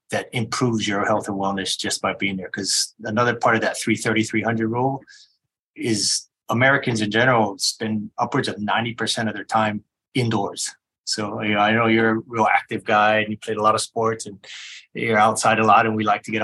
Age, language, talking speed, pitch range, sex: 20-39, English, 200 wpm, 105-120 Hz, male